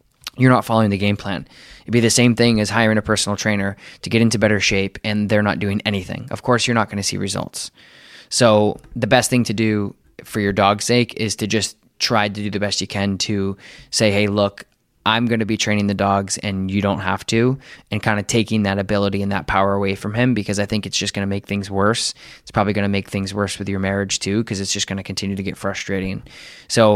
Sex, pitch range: male, 100-110 Hz